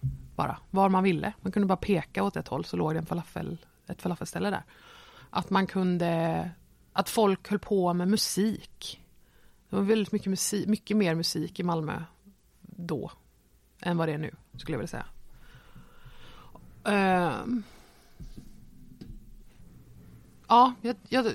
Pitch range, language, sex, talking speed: 175-225 Hz, Swedish, female, 140 wpm